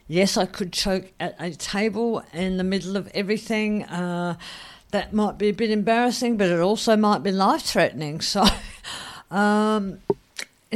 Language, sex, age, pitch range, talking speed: English, female, 50-69, 155-195 Hz, 155 wpm